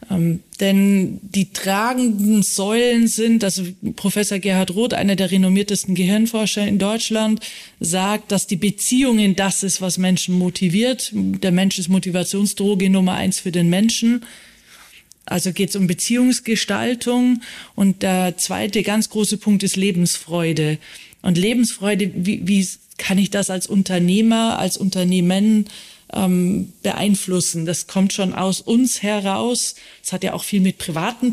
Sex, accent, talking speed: female, German, 140 wpm